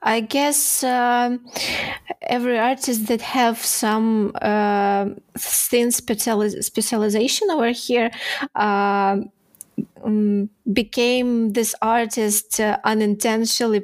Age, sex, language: 20-39, female, English